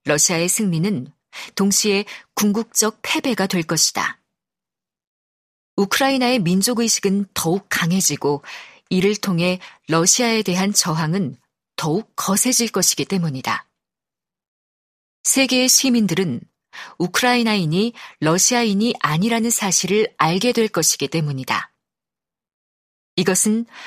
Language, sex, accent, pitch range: Korean, female, native, 165-225 Hz